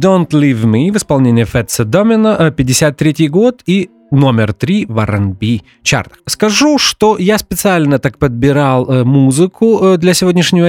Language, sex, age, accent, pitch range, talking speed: Russian, male, 30-49, native, 125-170 Hz, 135 wpm